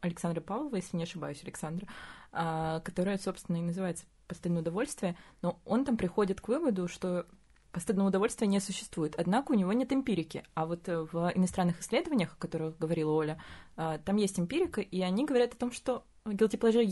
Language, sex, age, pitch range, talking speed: Russian, female, 20-39, 165-205 Hz, 165 wpm